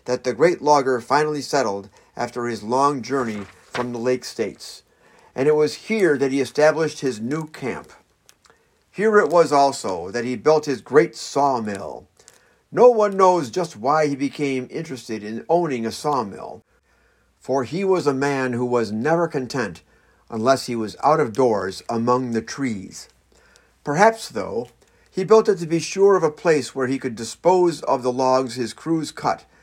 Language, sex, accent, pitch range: English, male, American, 125-165 Hz